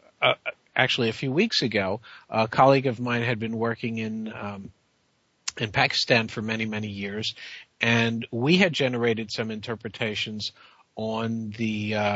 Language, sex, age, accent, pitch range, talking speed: English, male, 50-69, American, 110-130 Hz, 150 wpm